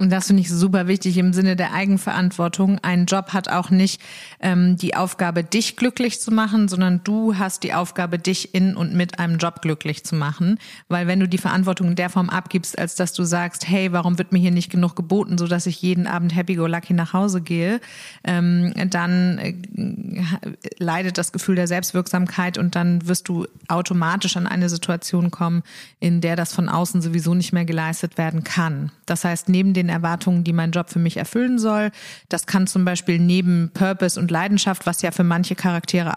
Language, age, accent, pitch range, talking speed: German, 30-49, German, 175-190 Hz, 195 wpm